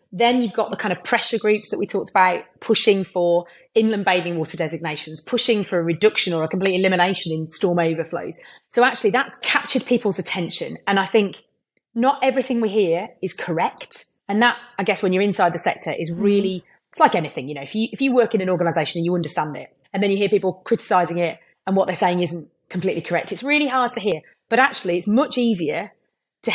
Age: 30-49